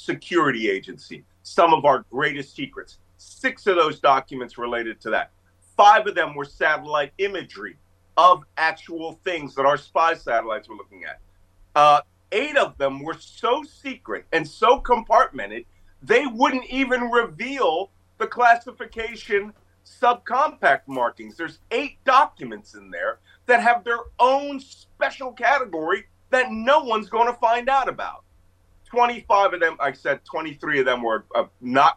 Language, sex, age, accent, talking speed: English, male, 40-59, American, 145 wpm